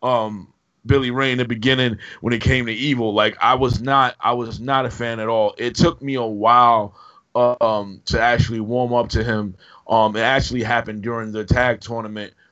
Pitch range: 110-125 Hz